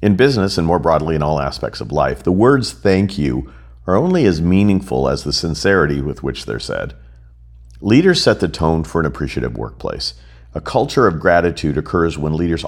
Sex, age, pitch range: male, 50-69, 65-95 Hz